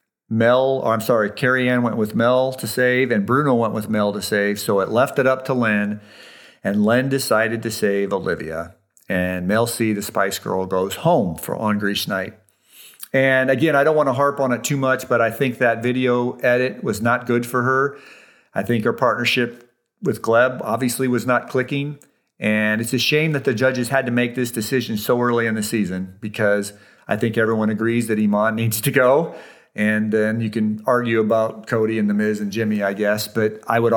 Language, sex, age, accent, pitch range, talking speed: English, male, 50-69, American, 105-130 Hz, 210 wpm